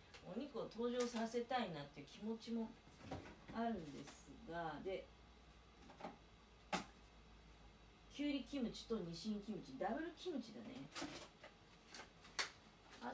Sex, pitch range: female, 185-280 Hz